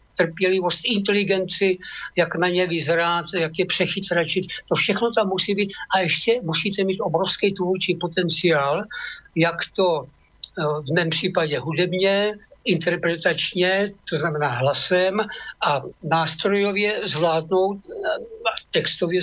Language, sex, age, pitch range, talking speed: Slovak, male, 60-79, 165-195 Hz, 110 wpm